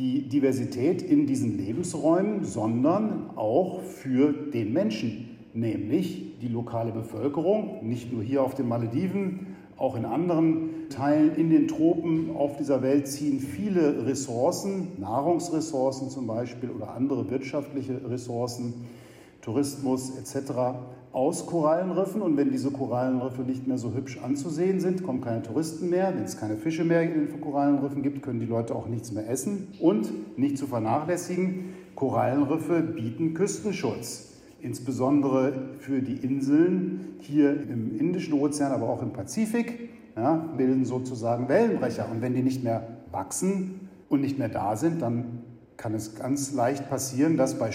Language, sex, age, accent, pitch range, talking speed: German, male, 50-69, German, 125-165 Hz, 145 wpm